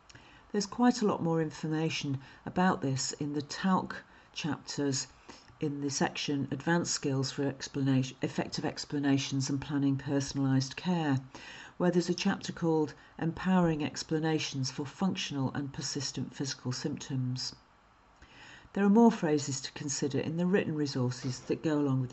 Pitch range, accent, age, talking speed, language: 140-180 Hz, British, 50-69, 140 wpm, English